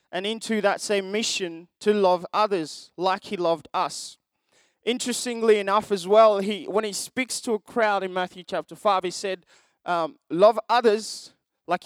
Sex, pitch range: male, 175-235 Hz